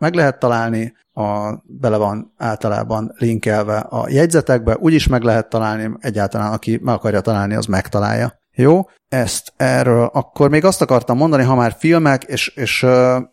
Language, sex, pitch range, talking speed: Hungarian, male, 110-130 Hz, 160 wpm